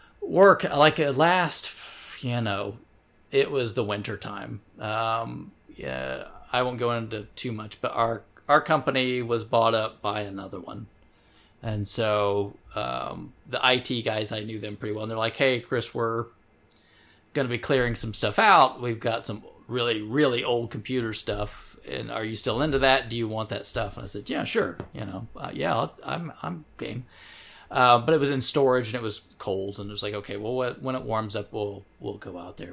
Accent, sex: American, male